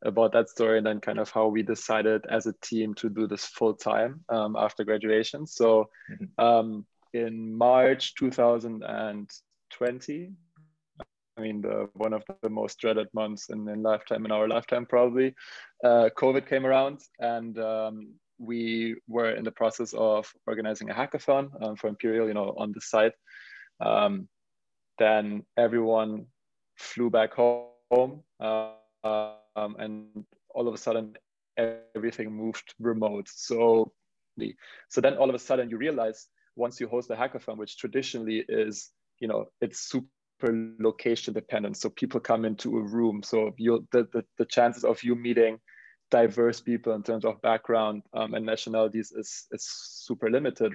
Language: English